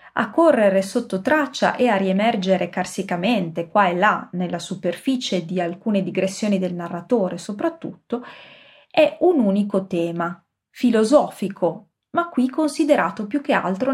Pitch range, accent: 180-270 Hz, native